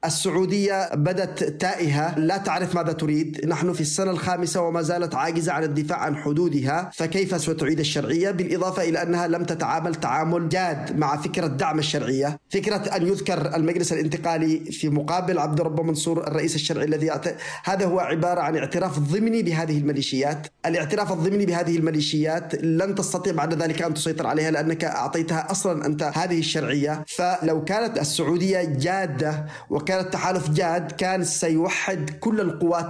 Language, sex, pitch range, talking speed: Arabic, male, 155-180 Hz, 150 wpm